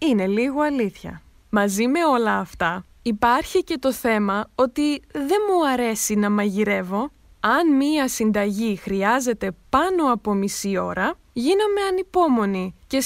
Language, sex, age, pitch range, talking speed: Greek, female, 20-39, 205-285 Hz, 130 wpm